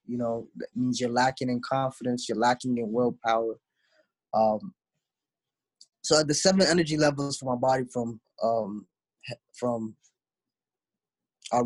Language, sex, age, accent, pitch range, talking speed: English, male, 20-39, American, 120-140 Hz, 135 wpm